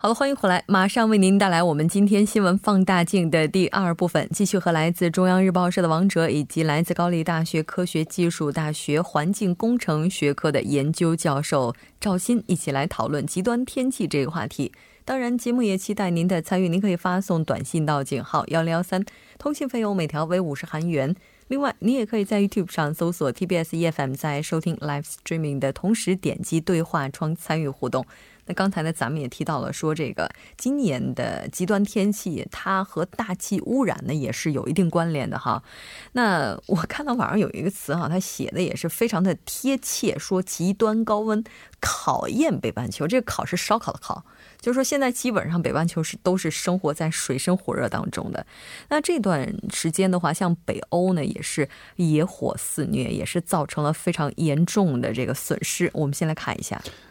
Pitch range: 160-200 Hz